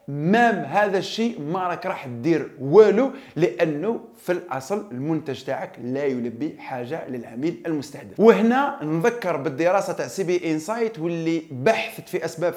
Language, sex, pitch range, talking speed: Arabic, male, 160-220 Hz, 140 wpm